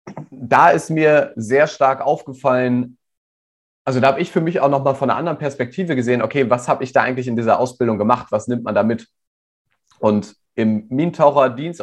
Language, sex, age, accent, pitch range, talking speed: German, male, 30-49, German, 115-140 Hz, 190 wpm